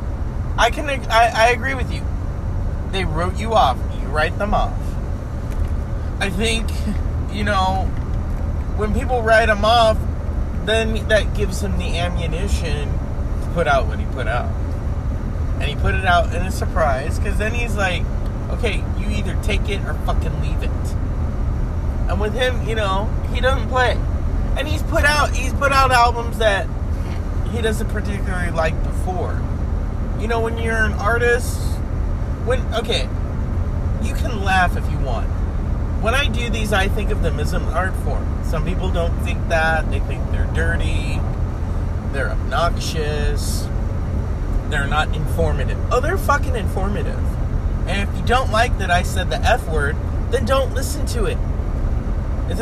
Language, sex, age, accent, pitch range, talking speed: English, male, 30-49, American, 80-95 Hz, 160 wpm